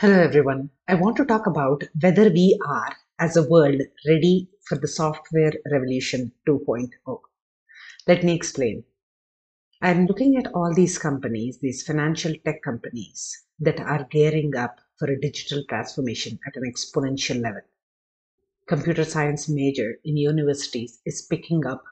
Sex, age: female, 50-69